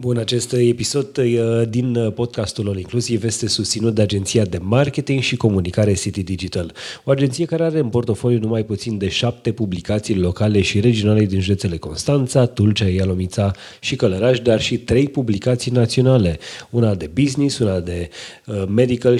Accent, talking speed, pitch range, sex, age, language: native, 155 wpm, 95-120 Hz, male, 30-49, Romanian